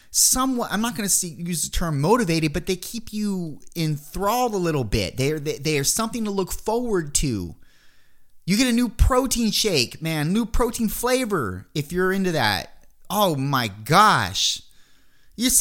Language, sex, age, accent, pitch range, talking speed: English, male, 30-49, American, 150-235 Hz, 170 wpm